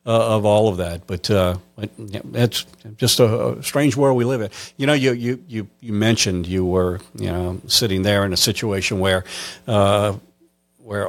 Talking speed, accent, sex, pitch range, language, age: 190 wpm, American, male, 95-115 Hz, English, 50-69